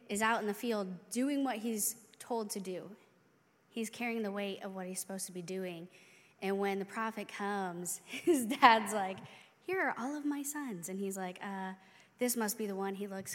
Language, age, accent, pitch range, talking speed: English, 20-39, American, 190-240 Hz, 210 wpm